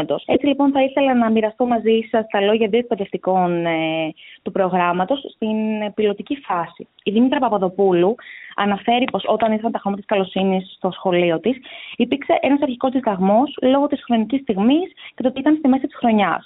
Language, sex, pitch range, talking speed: Greek, female, 195-265 Hz, 175 wpm